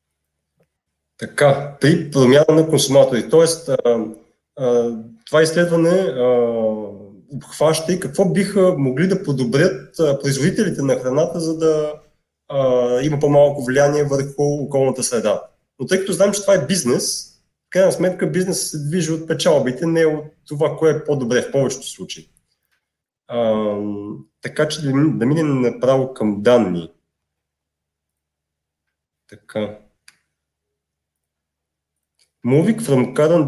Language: Bulgarian